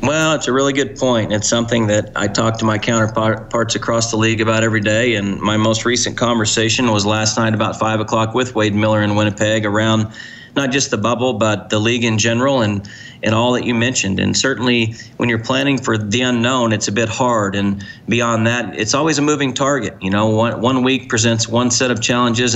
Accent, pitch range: American, 110-120 Hz